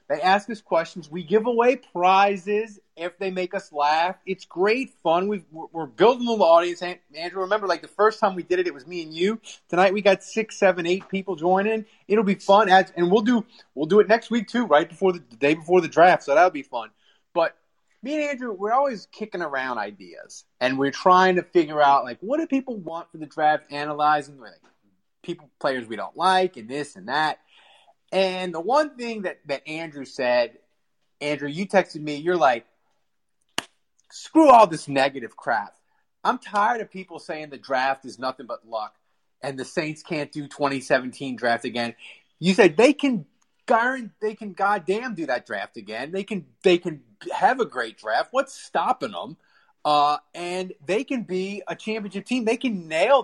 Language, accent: English, American